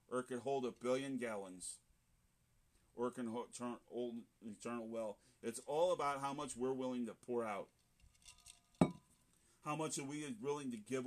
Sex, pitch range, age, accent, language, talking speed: male, 120-180 Hz, 40-59, American, English, 170 wpm